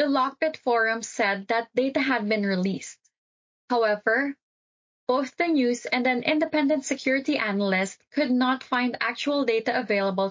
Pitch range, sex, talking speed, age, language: 215-280 Hz, female, 140 wpm, 20-39, English